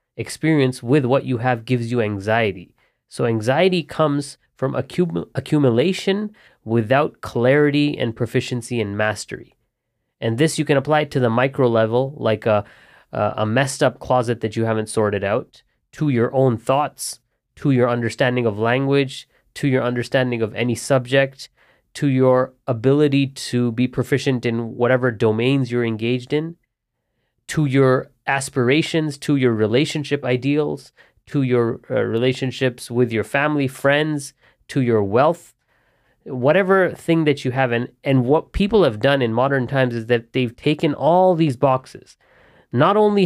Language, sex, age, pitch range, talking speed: English, male, 20-39, 120-145 Hz, 150 wpm